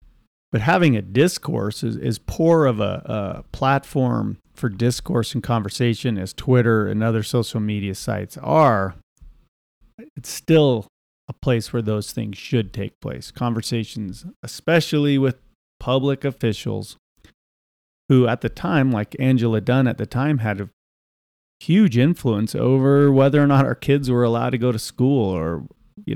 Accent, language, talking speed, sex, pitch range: American, English, 150 wpm, male, 105-135 Hz